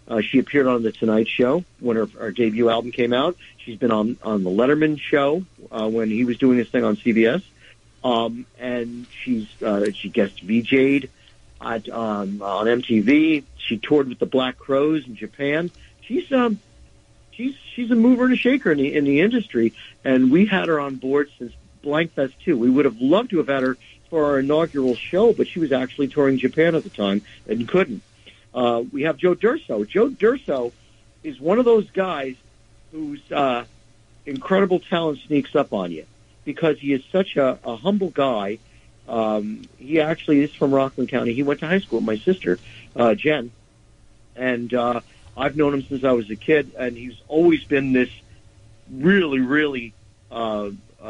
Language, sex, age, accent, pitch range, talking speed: English, male, 50-69, American, 115-155 Hz, 185 wpm